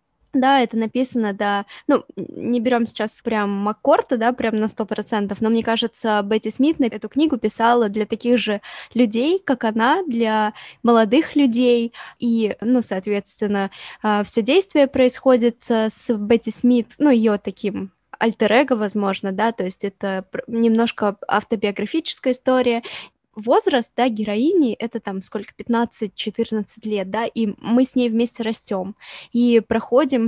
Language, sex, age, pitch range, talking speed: Russian, female, 10-29, 210-245 Hz, 140 wpm